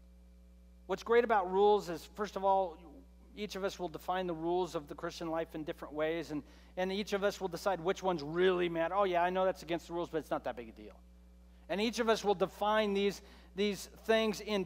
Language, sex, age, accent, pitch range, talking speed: English, male, 40-59, American, 170-230 Hz, 240 wpm